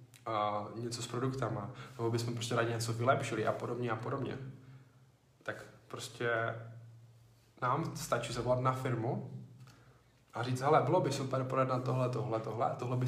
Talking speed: 155 wpm